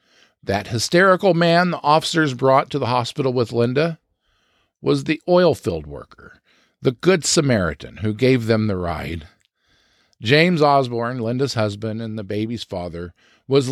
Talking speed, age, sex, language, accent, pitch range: 145 wpm, 50-69, male, English, American, 105-145 Hz